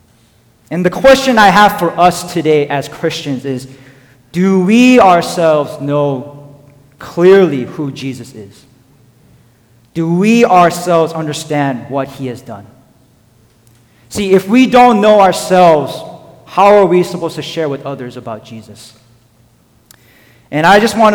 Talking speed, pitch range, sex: 135 wpm, 125-170 Hz, male